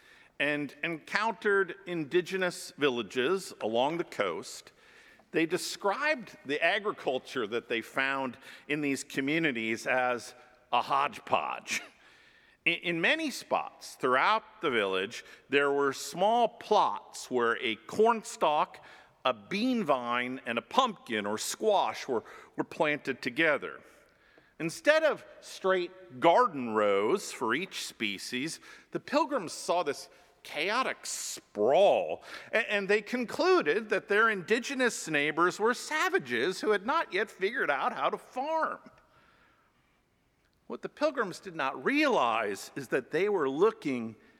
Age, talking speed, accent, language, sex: 50-69, 120 wpm, American, English, male